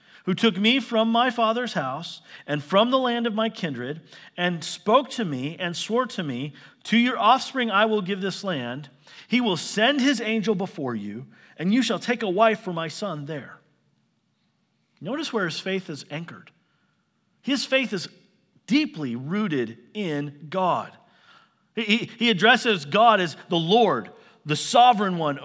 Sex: male